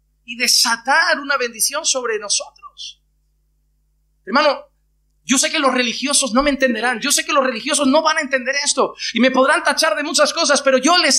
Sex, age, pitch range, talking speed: male, 30-49, 215-315 Hz, 190 wpm